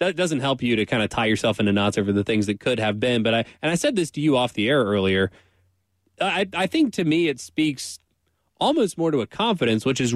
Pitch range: 110-150 Hz